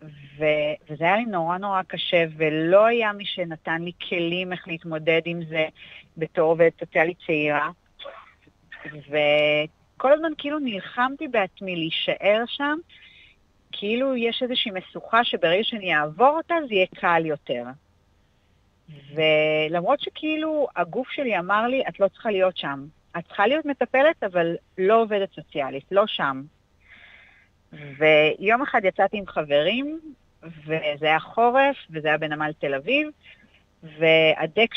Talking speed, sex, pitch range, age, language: 130 wpm, female, 155-235 Hz, 40-59, Hebrew